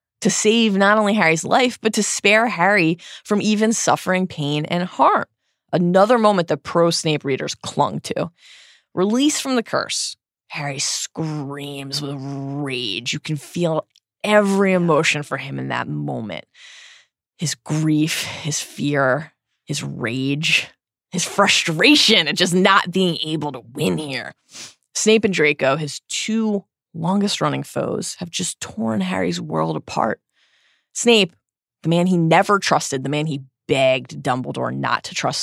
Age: 20-39